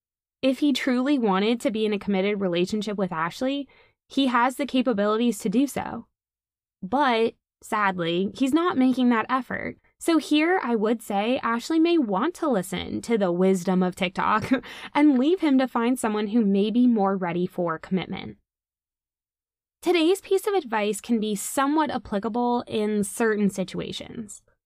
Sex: female